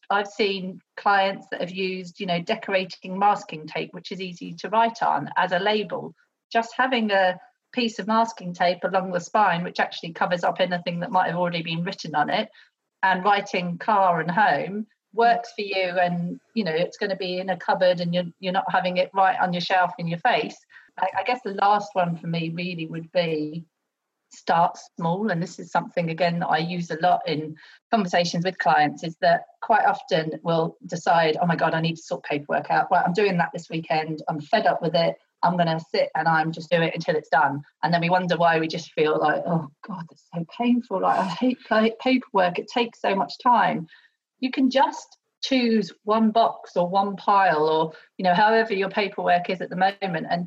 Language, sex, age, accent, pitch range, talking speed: English, female, 40-59, British, 170-210 Hz, 215 wpm